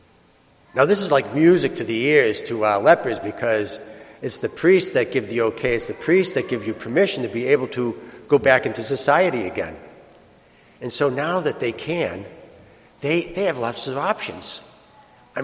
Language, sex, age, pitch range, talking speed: English, male, 60-79, 110-165 Hz, 185 wpm